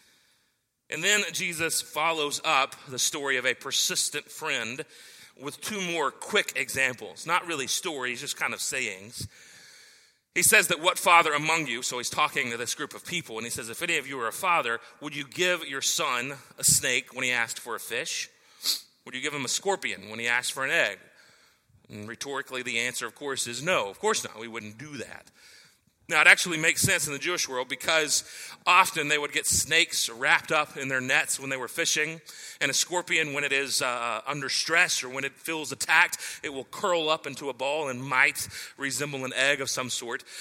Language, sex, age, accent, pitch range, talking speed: English, male, 30-49, American, 130-170 Hz, 210 wpm